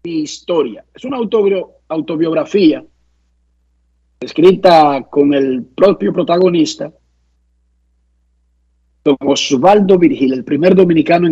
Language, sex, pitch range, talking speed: Spanish, male, 145-200 Hz, 80 wpm